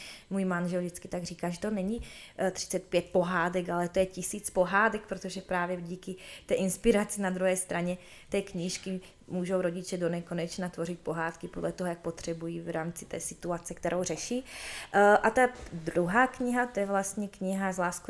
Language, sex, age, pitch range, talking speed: Czech, female, 20-39, 175-195 Hz, 170 wpm